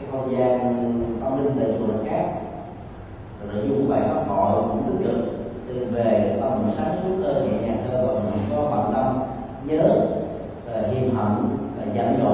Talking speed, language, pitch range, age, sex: 155 wpm, Vietnamese, 105-150 Hz, 20-39, male